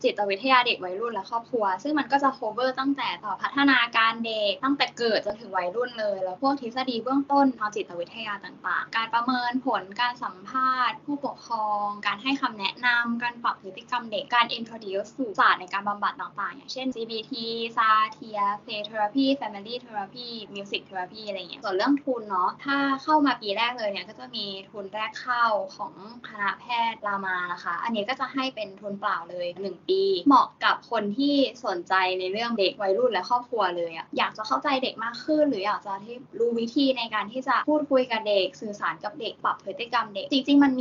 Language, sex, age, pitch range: Thai, female, 10-29, 200-260 Hz